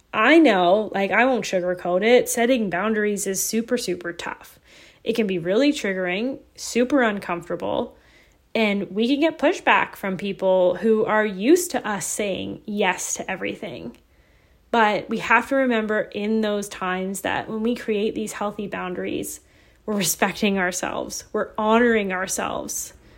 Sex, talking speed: female, 150 wpm